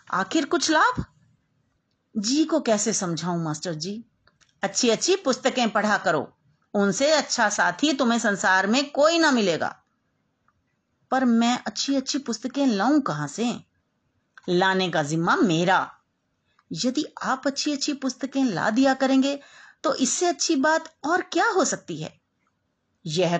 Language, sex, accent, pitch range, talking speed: Hindi, female, native, 185-285 Hz, 135 wpm